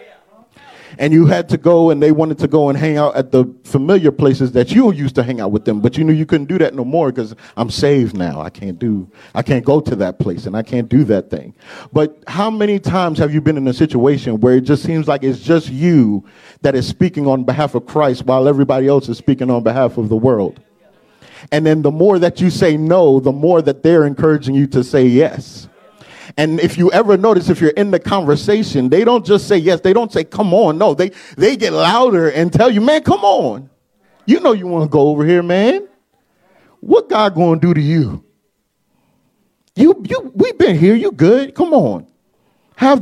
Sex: male